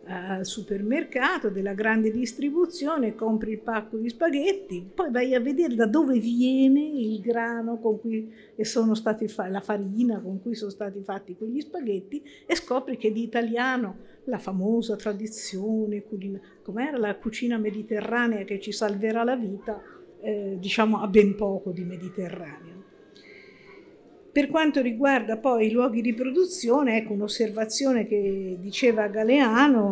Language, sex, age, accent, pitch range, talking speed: Italian, female, 50-69, native, 205-255 Hz, 140 wpm